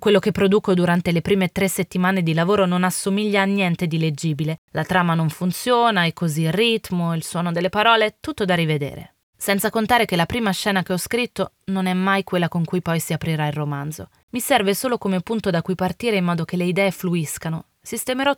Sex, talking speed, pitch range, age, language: female, 215 wpm, 165-215 Hz, 20-39, Italian